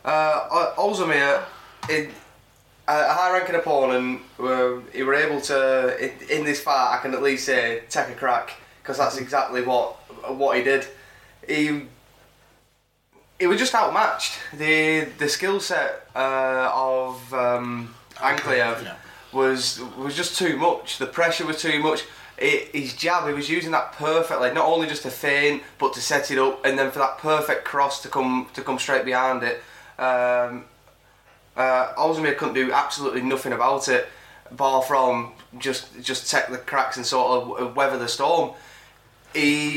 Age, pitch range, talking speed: 10-29, 130-150 Hz, 160 wpm